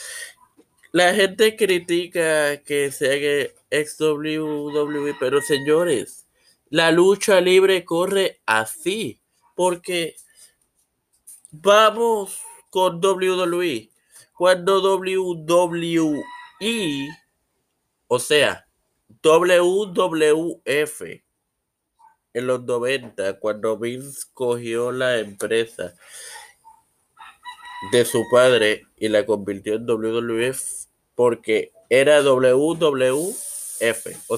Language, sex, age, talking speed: Spanish, male, 30-49, 75 wpm